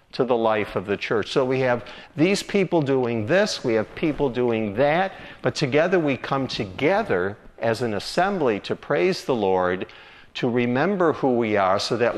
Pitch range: 110-160 Hz